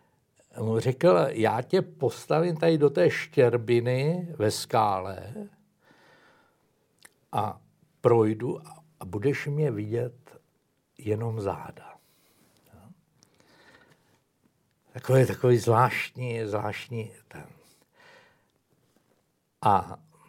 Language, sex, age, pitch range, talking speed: Slovak, male, 60-79, 115-175 Hz, 70 wpm